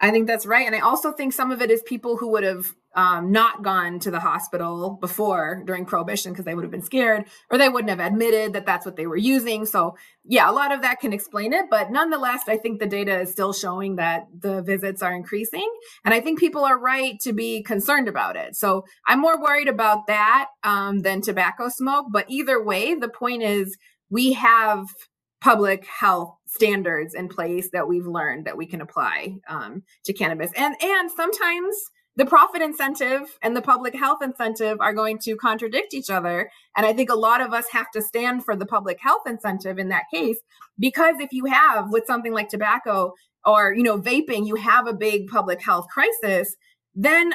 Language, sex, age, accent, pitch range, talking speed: English, female, 20-39, American, 195-265 Hz, 210 wpm